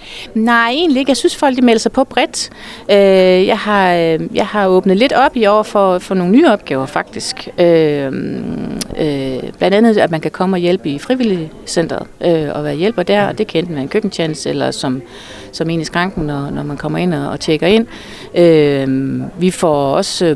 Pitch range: 150-200 Hz